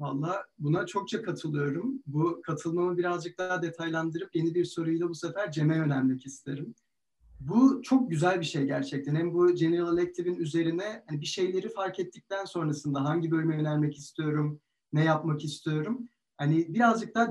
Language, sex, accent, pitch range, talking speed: Turkish, male, native, 165-225 Hz, 155 wpm